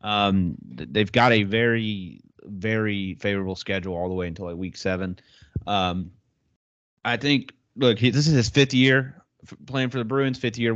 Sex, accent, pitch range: male, American, 105-125 Hz